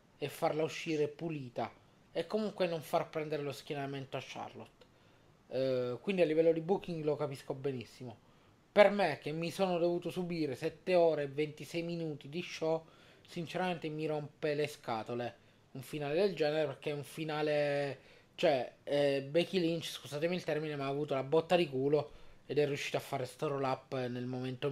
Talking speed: 175 wpm